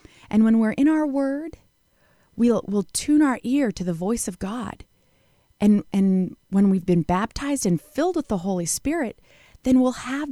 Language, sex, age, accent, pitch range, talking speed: English, female, 30-49, American, 195-270 Hz, 180 wpm